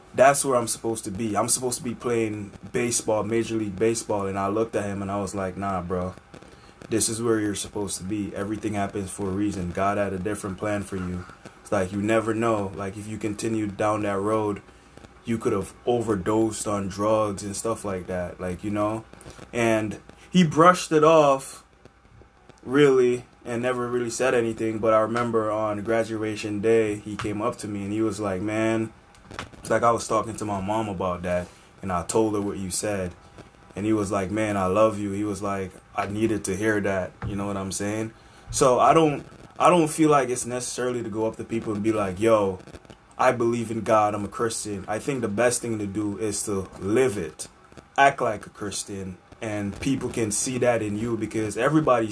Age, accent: 20-39, American